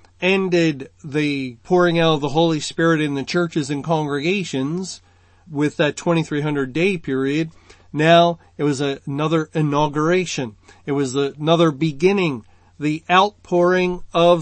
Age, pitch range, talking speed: 40-59, 140-175 Hz, 120 wpm